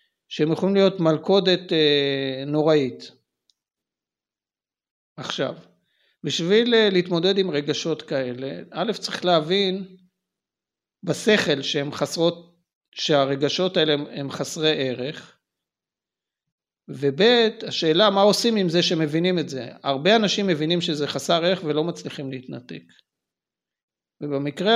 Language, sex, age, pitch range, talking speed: Hebrew, male, 50-69, 145-190 Hz, 100 wpm